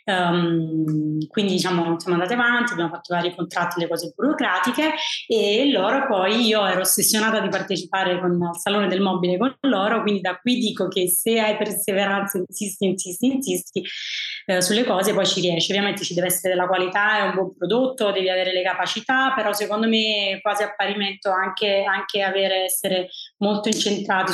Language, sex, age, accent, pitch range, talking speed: Italian, female, 20-39, native, 185-230 Hz, 175 wpm